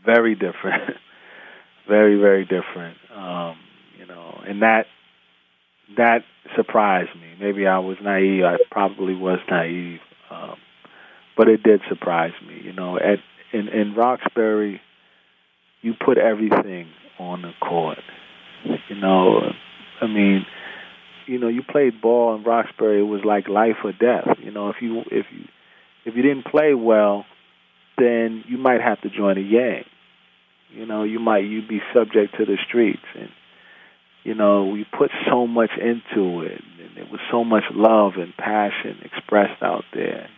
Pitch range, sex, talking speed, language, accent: 90-115 Hz, male, 155 wpm, English, American